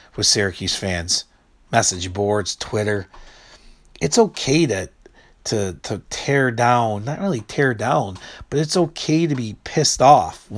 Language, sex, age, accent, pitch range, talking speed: English, male, 40-59, American, 115-185 Hz, 135 wpm